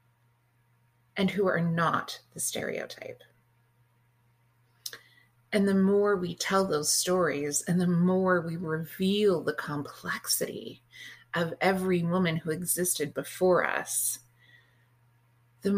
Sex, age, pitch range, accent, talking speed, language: female, 30-49, 120-180 Hz, American, 105 wpm, English